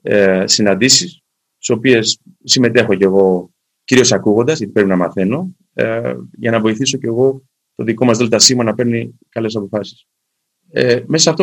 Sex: male